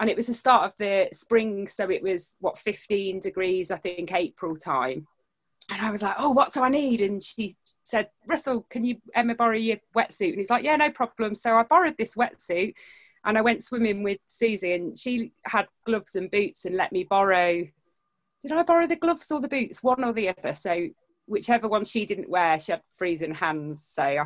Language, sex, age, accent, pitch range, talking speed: English, female, 30-49, British, 190-255 Hz, 215 wpm